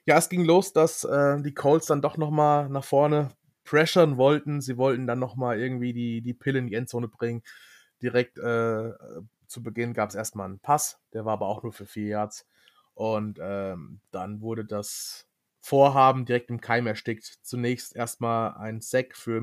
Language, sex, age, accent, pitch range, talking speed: German, male, 20-39, German, 110-130 Hz, 180 wpm